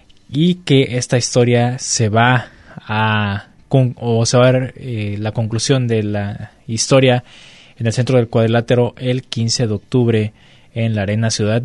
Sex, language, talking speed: male, Spanish, 160 wpm